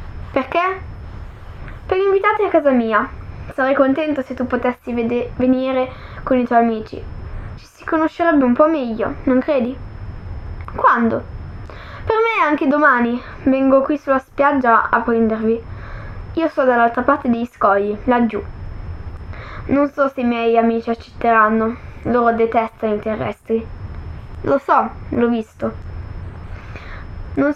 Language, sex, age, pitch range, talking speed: Italian, female, 10-29, 210-270 Hz, 130 wpm